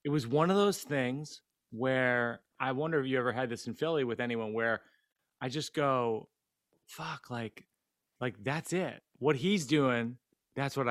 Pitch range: 130-170 Hz